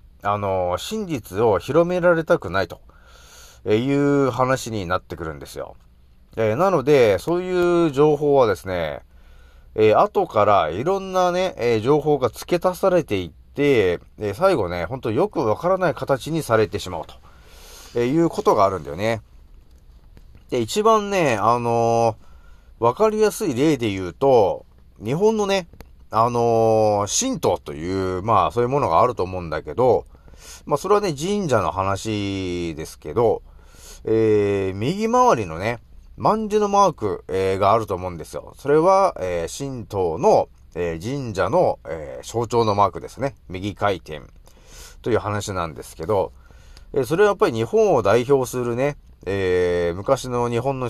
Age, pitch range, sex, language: 30-49, 90-150 Hz, male, Japanese